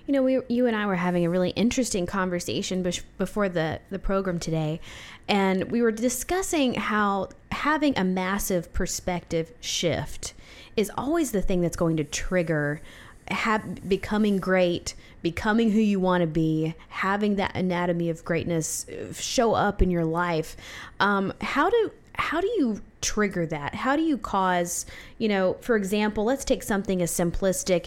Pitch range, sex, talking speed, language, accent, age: 175-225 Hz, female, 160 wpm, English, American, 20-39